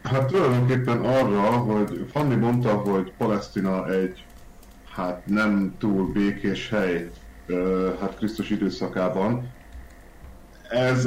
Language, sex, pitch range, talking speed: Hungarian, male, 90-105 Hz, 100 wpm